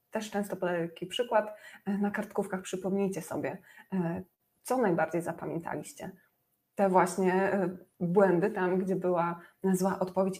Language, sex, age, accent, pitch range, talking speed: Polish, female, 20-39, native, 180-210 Hz, 115 wpm